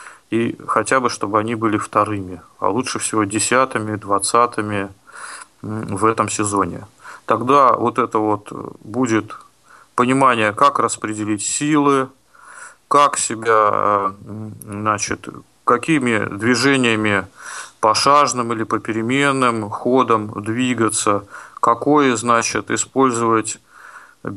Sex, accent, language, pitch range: male, native, Russian, 110-130 Hz